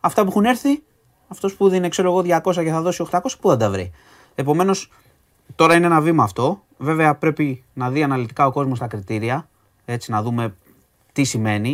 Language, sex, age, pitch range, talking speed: Greek, male, 30-49, 110-160 Hz, 195 wpm